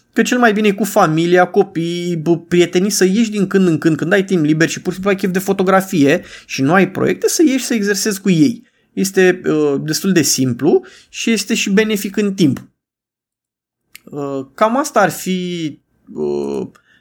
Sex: male